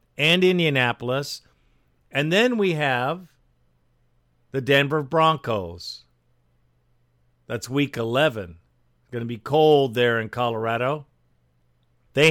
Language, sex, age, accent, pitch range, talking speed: English, male, 50-69, American, 95-155 Hz, 100 wpm